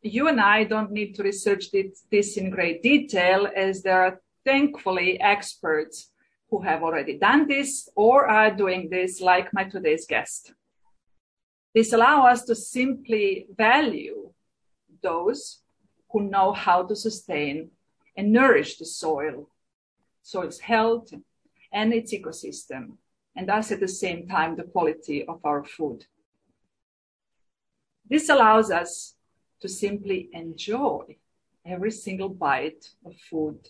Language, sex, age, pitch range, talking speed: English, female, 40-59, 175-230 Hz, 130 wpm